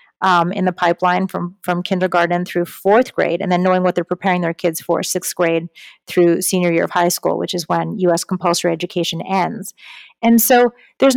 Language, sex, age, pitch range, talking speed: English, female, 30-49, 180-230 Hz, 205 wpm